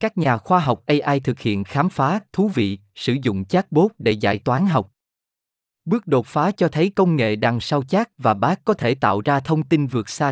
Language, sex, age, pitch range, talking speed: Vietnamese, male, 20-39, 115-160 Hz, 220 wpm